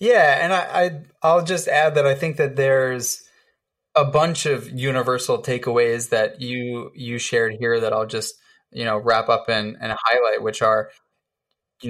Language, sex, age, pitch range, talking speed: English, male, 20-39, 110-140 Hz, 175 wpm